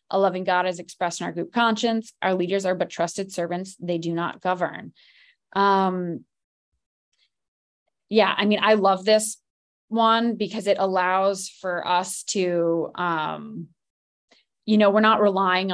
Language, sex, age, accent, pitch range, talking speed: English, female, 20-39, American, 175-205 Hz, 150 wpm